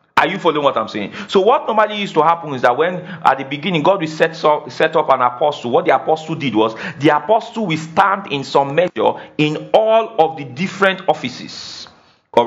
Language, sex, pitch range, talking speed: English, male, 130-180 Hz, 215 wpm